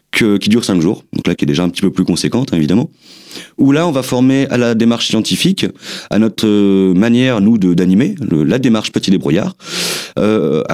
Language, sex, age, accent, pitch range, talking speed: French, male, 40-59, French, 80-115 Hz, 205 wpm